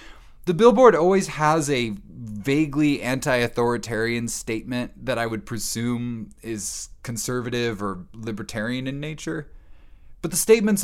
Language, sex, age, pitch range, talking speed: English, male, 20-39, 110-165 Hz, 115 wpm